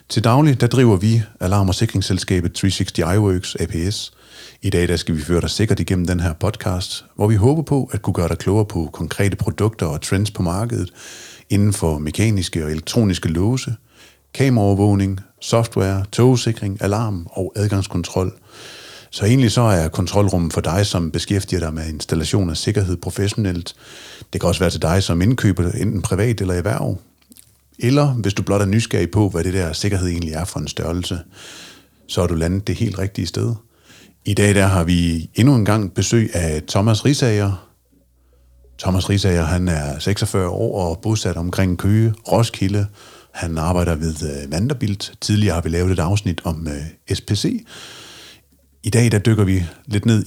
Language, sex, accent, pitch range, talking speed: Danish, male, native, 85-110 Hz, 175 wpm